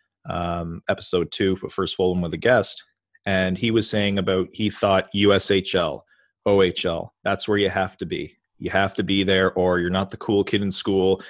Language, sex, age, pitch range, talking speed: English, male, 30-49, 95-110 Hz, 195 wpm